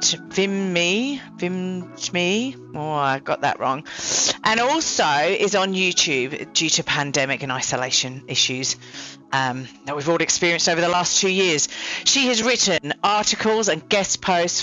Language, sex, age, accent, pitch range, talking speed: English, female, 40-59, British, 165-220 Hz, 150 wpm